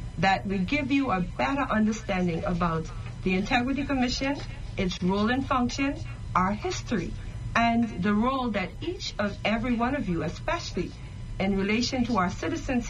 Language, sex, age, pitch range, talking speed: English, female, 40-59, 175-245 Hz, 155 wpm